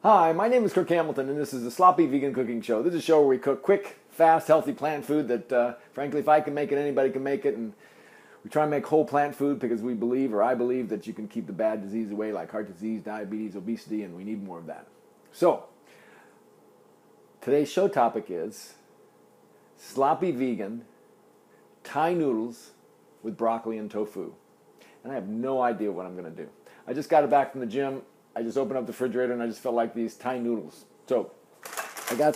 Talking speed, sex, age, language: 220 wpm, male, 40-59, English